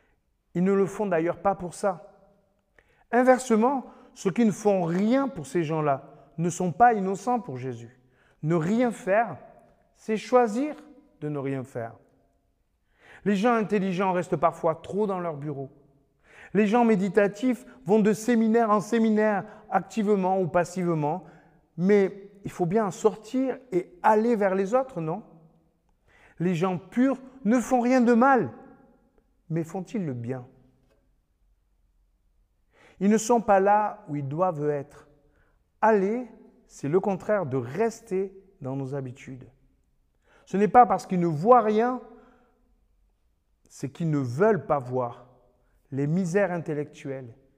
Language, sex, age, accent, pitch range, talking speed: French, male, 40-59, French, 150-215 Hz, 140 wpm